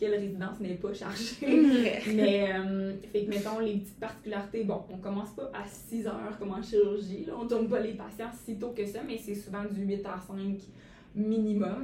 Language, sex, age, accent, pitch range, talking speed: French, female, 20-39, Canadian, 185-205 Hz, 210 wpm